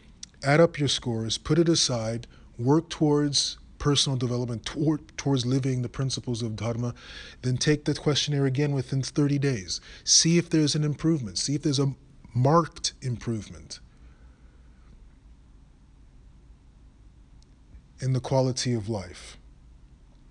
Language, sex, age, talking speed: English, male, 30-49, 120 wpm